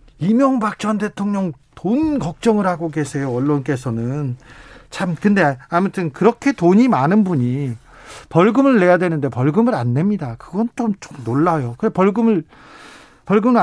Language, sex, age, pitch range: Korean, male, 40-59, 140-205 Hz